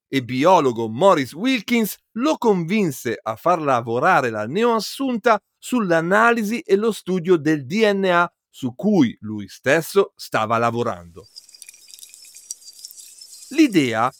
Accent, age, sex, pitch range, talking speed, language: native, 50-69, male, 130-215 Hz, 100 wpm, Italian